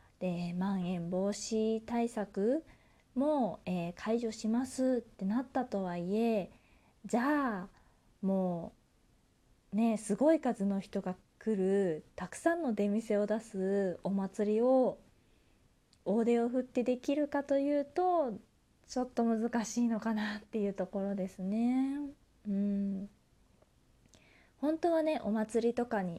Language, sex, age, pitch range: Japanese, female, 20-39, 185-245 Hz